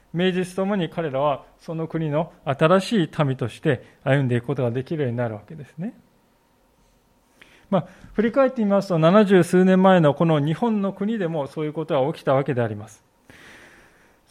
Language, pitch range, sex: Japanese, 145-200 Hz, male